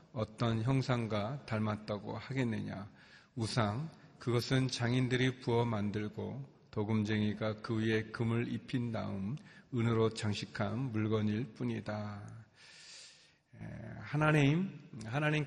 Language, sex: Korean, male